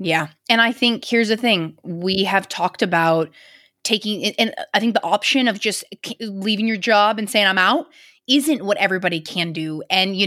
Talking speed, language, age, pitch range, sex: 200 wpm, English, 20-39, 185-235 Hz, female